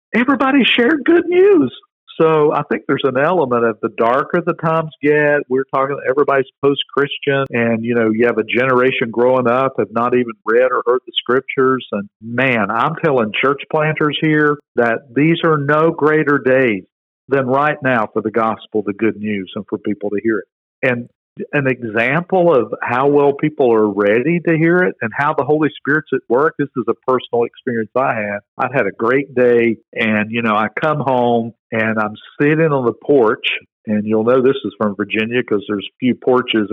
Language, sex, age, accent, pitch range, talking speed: English, male, 50-69, American, 115-155 Hz, 195 wpm